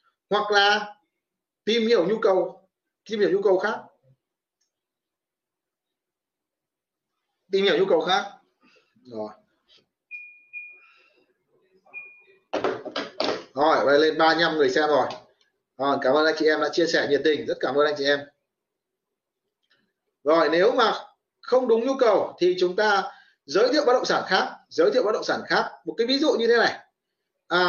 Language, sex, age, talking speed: Vietnamese, male, 30-49, 150 wpm